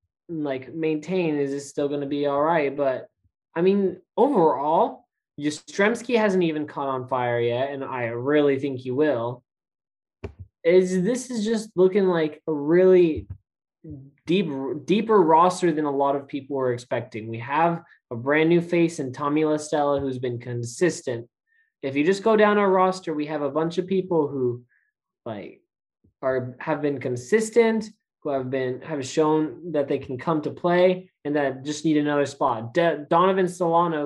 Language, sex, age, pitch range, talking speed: English, male, 20-39, 140-180 Hz, 170 wpm